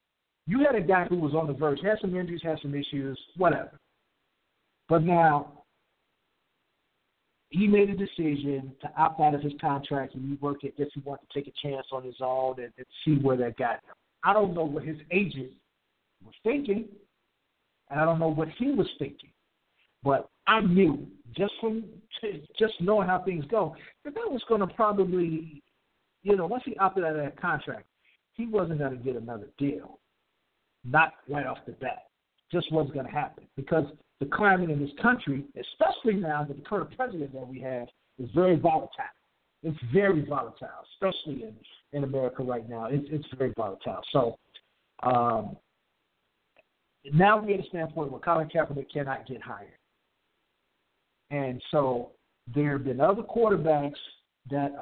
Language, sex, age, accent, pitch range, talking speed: English, male, 50-69, American, 140-190 Hz, 170 wpm